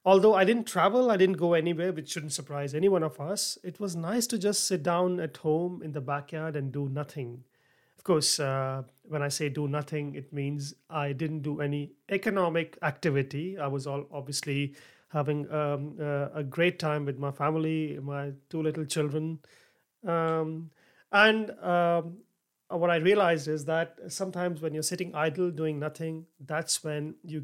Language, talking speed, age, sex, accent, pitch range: English, 175 wpm, 30-49, male, Indian, 150-185 Hz